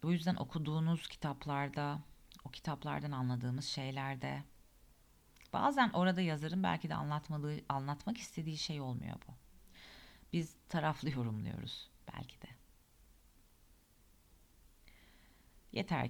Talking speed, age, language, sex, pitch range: 90 wpm, 40-59, Turkish, female, 130-185 Hz